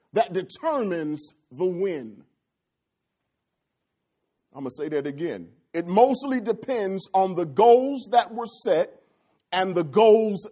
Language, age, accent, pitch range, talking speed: English, 40-59, American, 165-235 Hz, 120 wpm